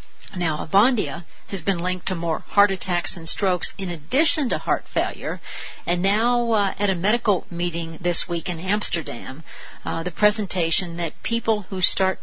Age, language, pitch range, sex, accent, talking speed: 60-79, English, 175-205 Hz, female, American, 165 wpm